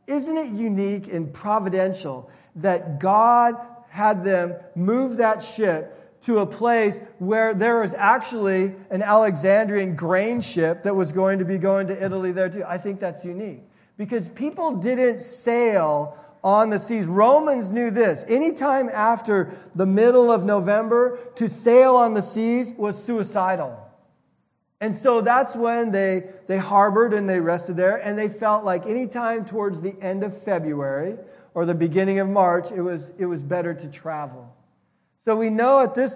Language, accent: English, American